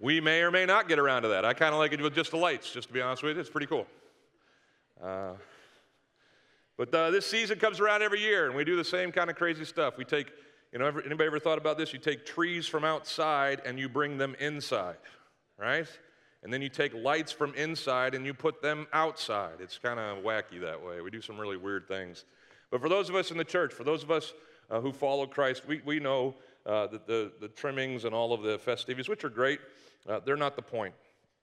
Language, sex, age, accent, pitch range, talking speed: English, male, 40-59, American, 105-150 Hz, 245 wpm